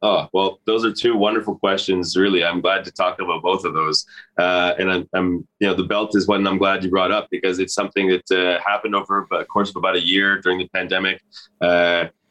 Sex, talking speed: male, 235 wpm